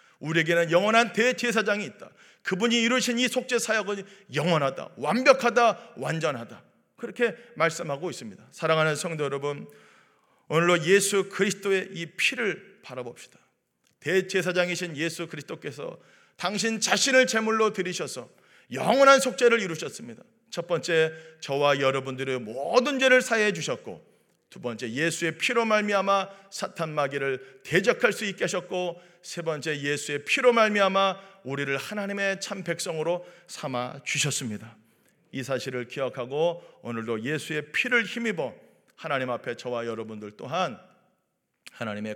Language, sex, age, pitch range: Korean, male, 40-59, 135-200 Hz